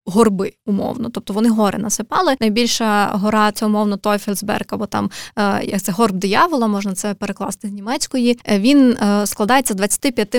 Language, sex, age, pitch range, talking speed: Ukrainian, female, 20-39, 210-245 Hz, 155 wpm